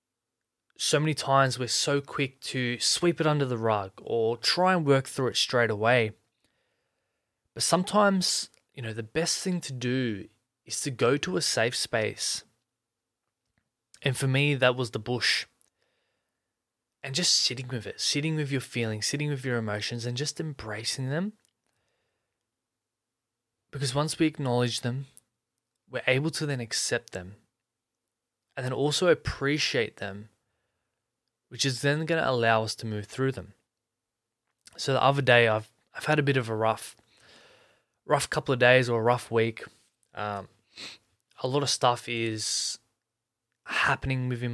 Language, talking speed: English, 155 wpm